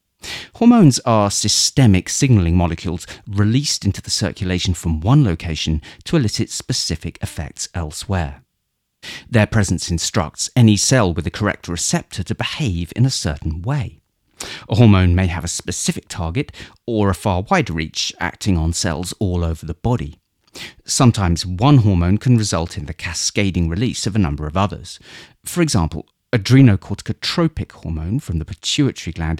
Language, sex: English, male